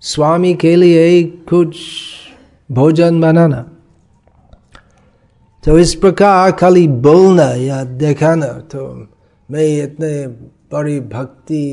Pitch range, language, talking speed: 135-175 Hz, Hindi, 90 wpm